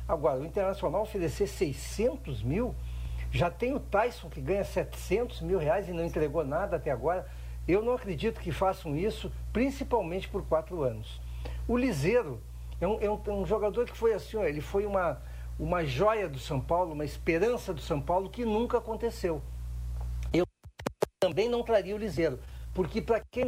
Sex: male